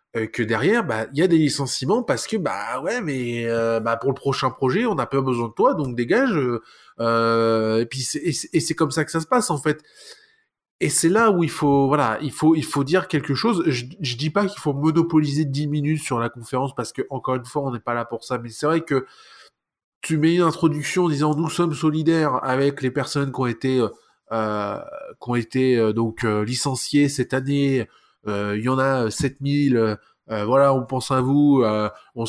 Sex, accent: male, French